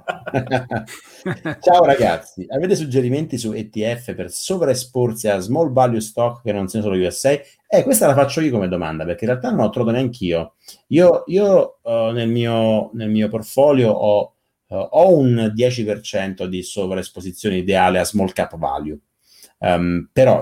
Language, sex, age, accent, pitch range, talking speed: Italian, male, 30-49, native, 95-130 Hz, 155 wpm